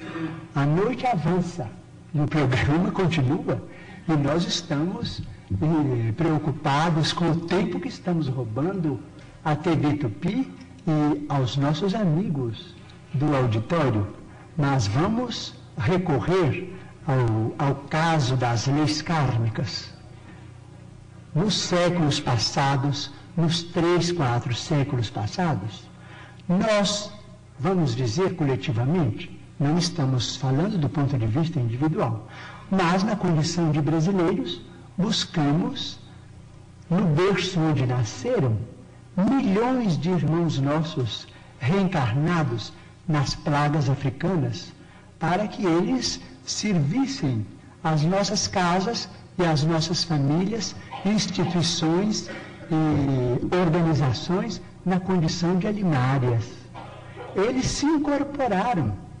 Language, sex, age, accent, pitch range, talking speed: Portuguese, male, 60-79, Brazilian, 135-180 Hz, 95 wpm